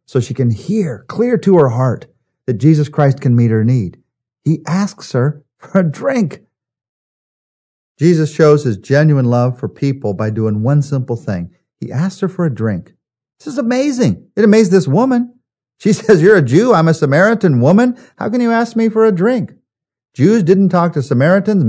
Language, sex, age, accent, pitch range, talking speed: English, male, 50-69, American, 120-190 Hz, 190 wpm